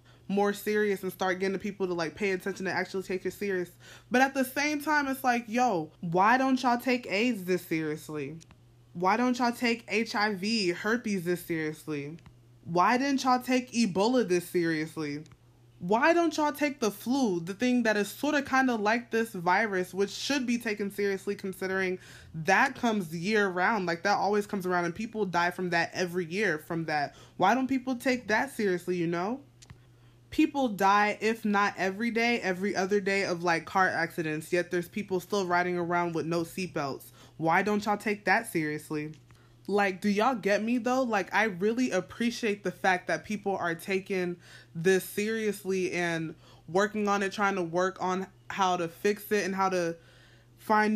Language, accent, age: English, American, 20-39